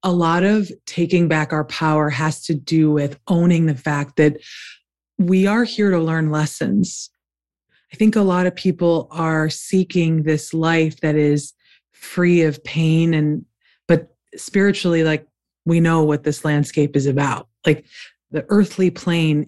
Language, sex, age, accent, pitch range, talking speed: English, female, 20-39, American, 155-185 Hz, 155 wpm